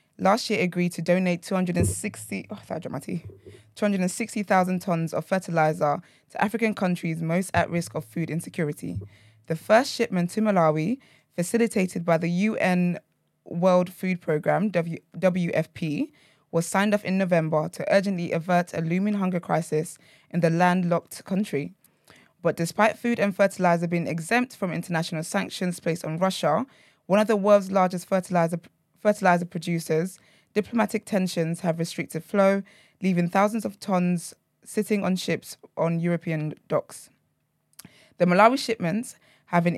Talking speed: 130 wpm